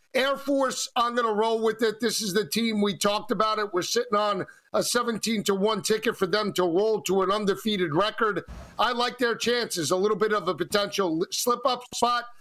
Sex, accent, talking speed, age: male, American, 220 wpm, 50-69